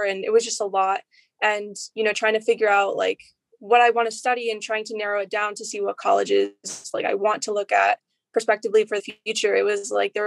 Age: 20-39